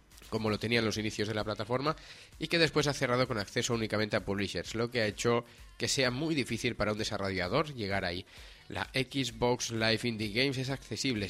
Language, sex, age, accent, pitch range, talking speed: Spanish, male, 20-39, Spanish, 105-130 Hz, 200 wpm